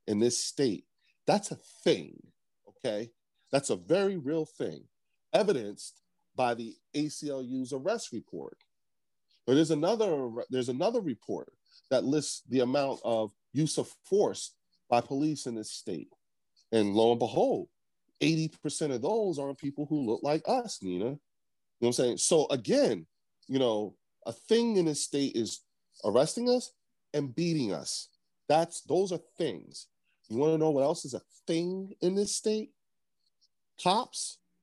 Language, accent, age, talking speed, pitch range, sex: English, American, 40-59, 150 wpm, 125-205 Hz, male